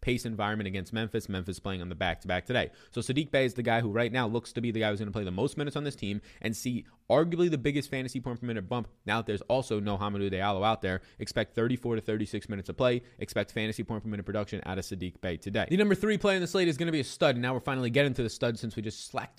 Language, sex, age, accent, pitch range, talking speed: English, male, 20-39, American, 105-130 Hz, 295 wpm